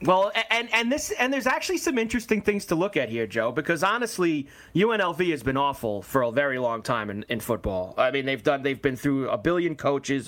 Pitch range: 135-200 Hz